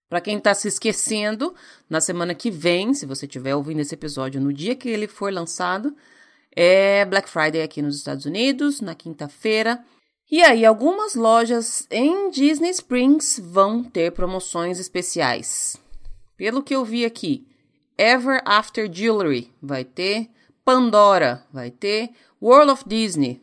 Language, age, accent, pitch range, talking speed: Portuguese, 30-49, Brazilian, 160-245 Hz, 145 wpm